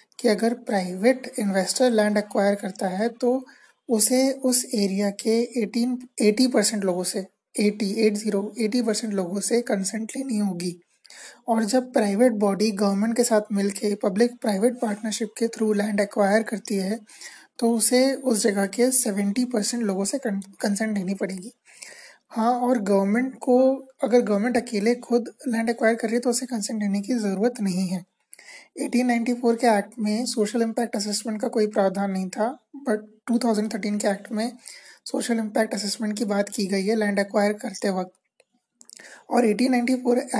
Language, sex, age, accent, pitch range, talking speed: Hindi, male, 20-39, native, 205-245 Hz, 160 wpm